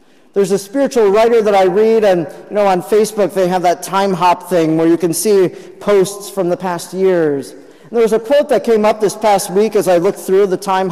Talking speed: 235 wpm